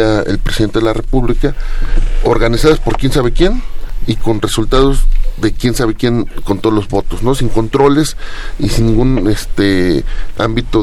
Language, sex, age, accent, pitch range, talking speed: Spanish, male, 30-49, Mexican, 105-125 Hz, 160 wpm